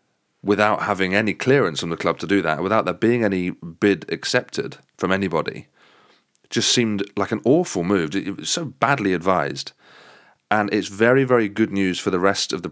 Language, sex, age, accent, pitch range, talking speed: English, male, 30-49, British, 95-125 Hz, 190 wpm